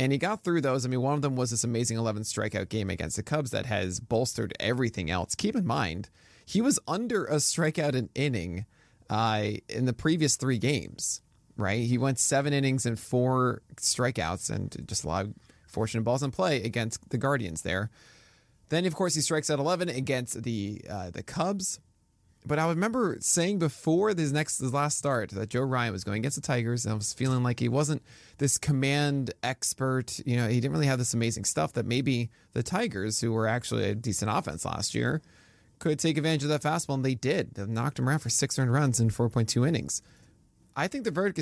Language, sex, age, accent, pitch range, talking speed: English, male, 20-39, American, 110-150 Hz, 210 wpm